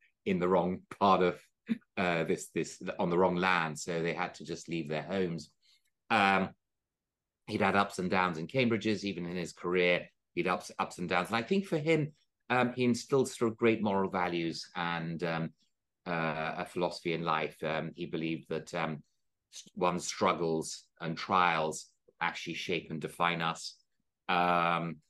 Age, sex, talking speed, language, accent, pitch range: 30-49, male, 175 wpm, English, British, 85-100 Hz